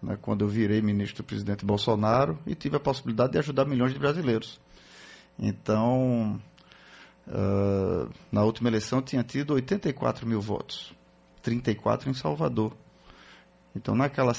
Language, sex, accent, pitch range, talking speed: Portuguese, male, Brazilian, 110-145 Hz, 140 wpm